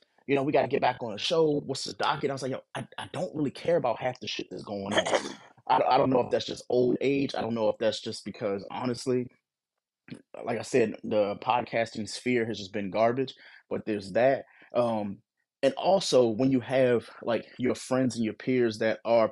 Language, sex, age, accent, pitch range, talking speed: English, male, 20-39, American, 110-130 Hz, 225 wpm